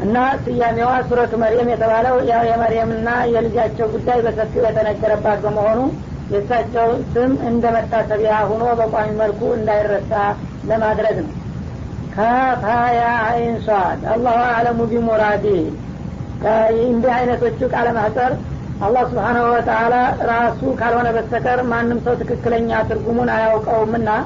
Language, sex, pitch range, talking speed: Amharic, female, 220-240 Hz, 100 wpm